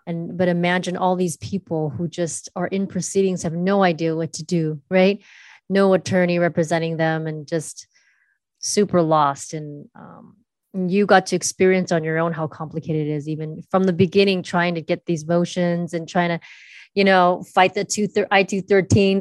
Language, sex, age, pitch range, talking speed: English, female, 20-39, 165-190 Hz, 180 wpm